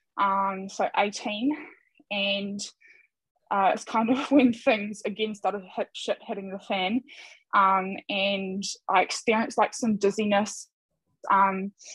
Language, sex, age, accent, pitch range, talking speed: English, female, 10-29, Australian, 195-220 Hz, 125 wpm